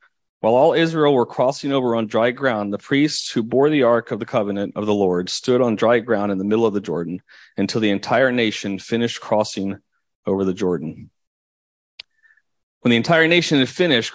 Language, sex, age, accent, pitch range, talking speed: English, male, 30-49, American, 105-130 Hz, 195 wpm